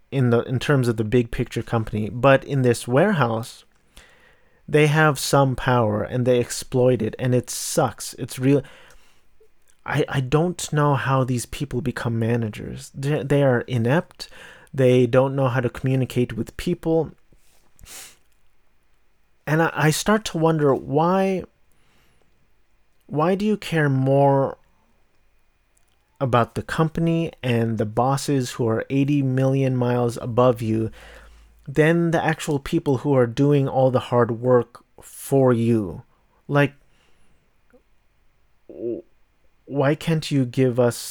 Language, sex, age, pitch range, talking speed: English, male, 30-49, 120-145 Hz, 135 wpm